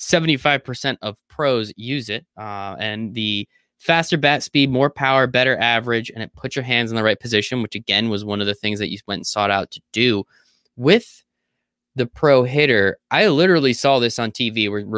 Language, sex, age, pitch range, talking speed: English, male, 20-39, 115-165 Hz, 200 wpm